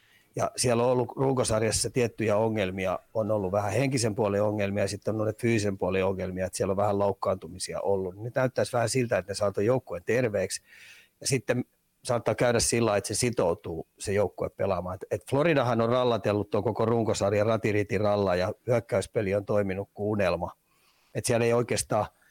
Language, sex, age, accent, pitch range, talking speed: Finnish, male, 30-49, native, 100-120 Hz, 170 wpm